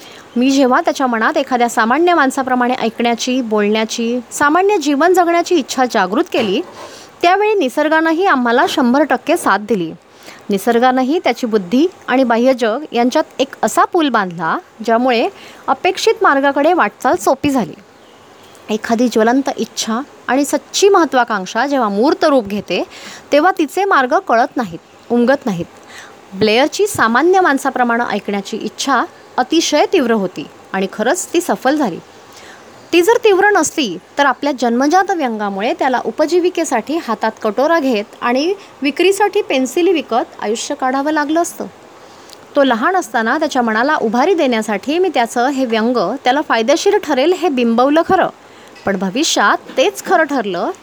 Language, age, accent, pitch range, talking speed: Marathi, 20-39, native, 235-340 Hz, 130 wpm